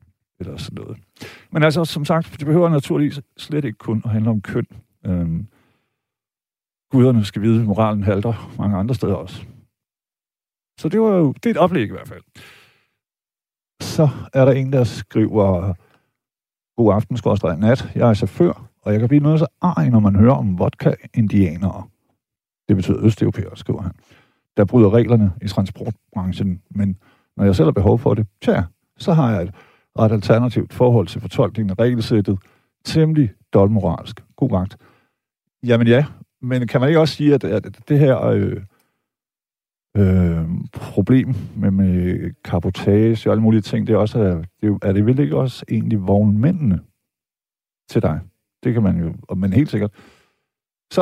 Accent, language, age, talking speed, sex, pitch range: native, Danish, 50-69, 160 wpm, male, 100-135 Hz